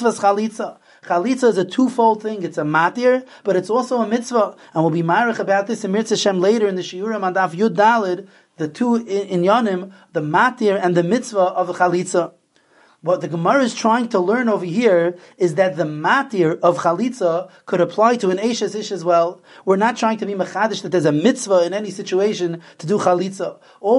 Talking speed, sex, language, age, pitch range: 210 wpm, male, English, 30-49, 180-225 Hz